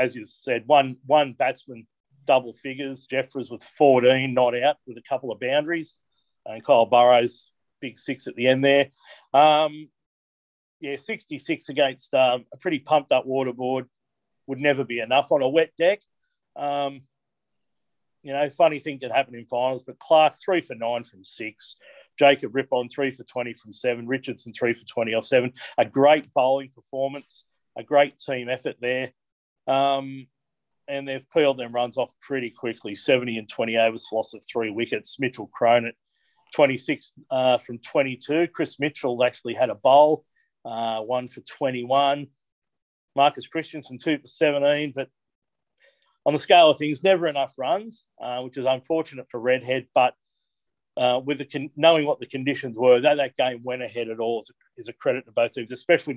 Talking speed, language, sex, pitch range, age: 170 wpm, English, male, 120-145 Hz, 40-59